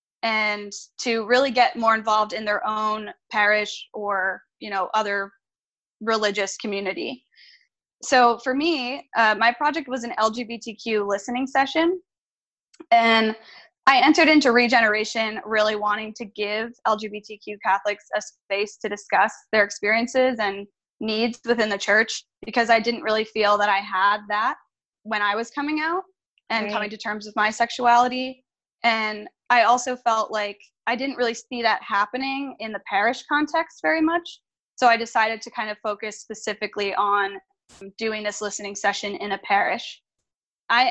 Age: 10-29